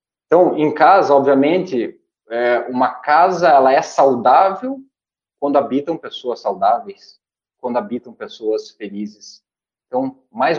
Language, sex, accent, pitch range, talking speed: Portuguese, male, Brazilian, 120-160 Hz, 110 wpm